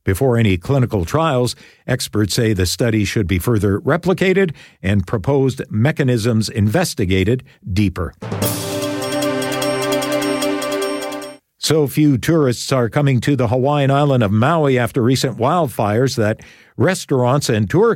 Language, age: English, 50-69